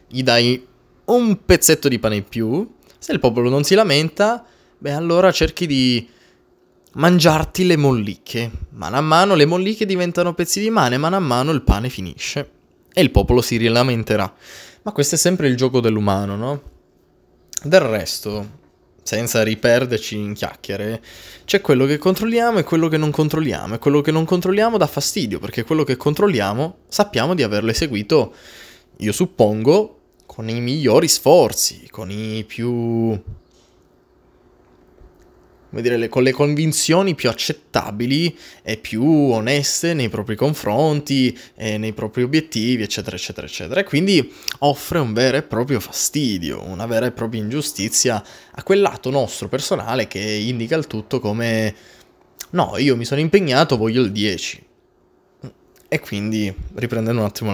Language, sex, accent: Italian, male, native